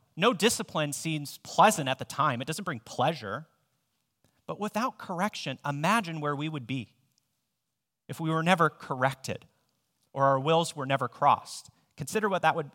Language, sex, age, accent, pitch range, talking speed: English, male, 30-49, American, 125-160 Hz, 160 wpm